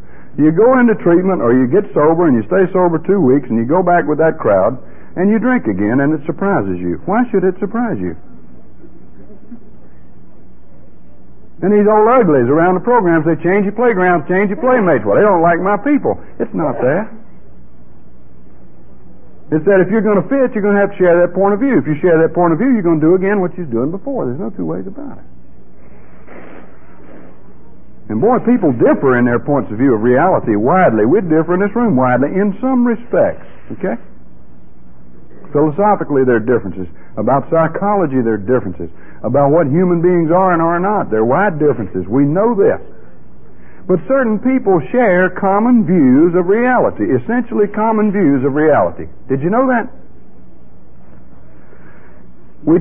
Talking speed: 180 wpm